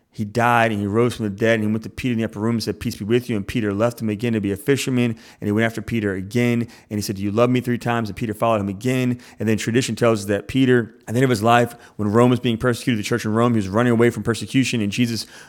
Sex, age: male, 30-49